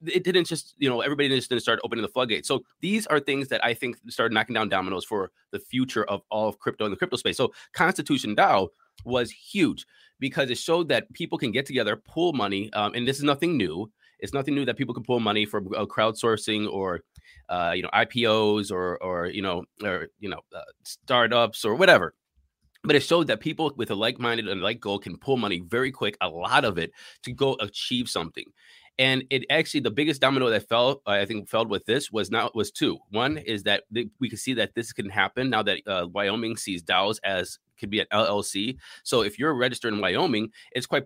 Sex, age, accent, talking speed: male, 20-39, American, 220 wpm